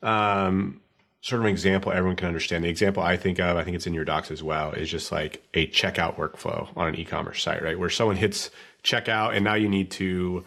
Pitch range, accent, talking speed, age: 90-110 Hz, American, 235 wpm, 30-49